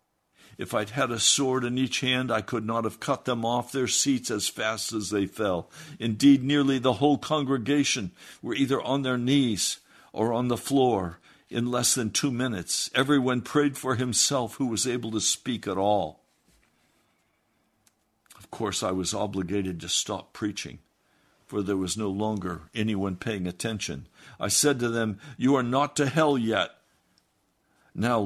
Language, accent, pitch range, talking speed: English, American, 110-145 Hz, 170 wpm